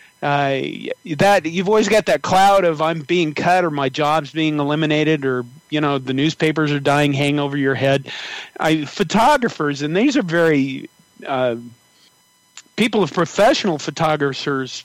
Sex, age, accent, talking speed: male, 40-59, American, 150 wpm